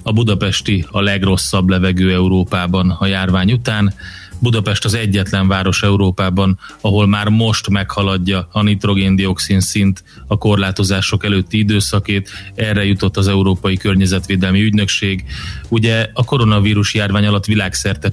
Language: Hungarian